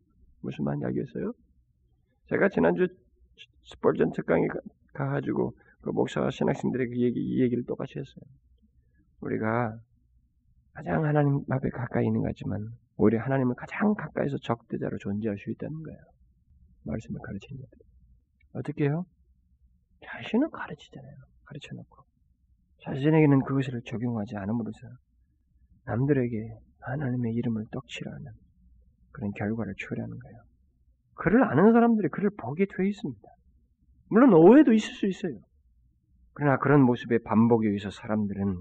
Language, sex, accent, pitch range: Korean, male, native, 80-130 Hz